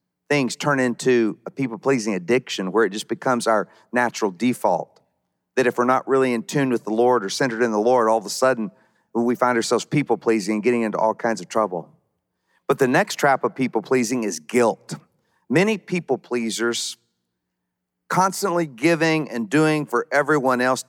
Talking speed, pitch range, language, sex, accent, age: 170 wpm, 115-145 Hz, English, male, American, 40-59